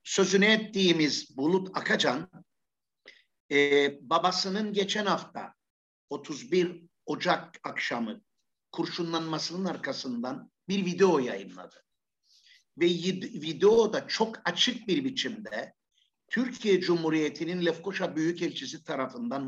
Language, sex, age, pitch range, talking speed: Turkish, male, 50-69, 165-215 Hz, 90 wpm